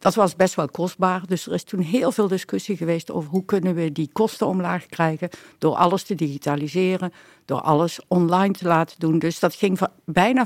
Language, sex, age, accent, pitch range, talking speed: Dutch, female, 60-79, Dutch, 155-185 Hz, 200 wpm